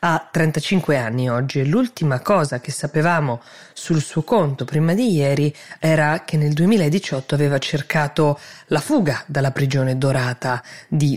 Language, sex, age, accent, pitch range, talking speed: Italian, female, 20-39, native, 140-165 Hz, 140 wpm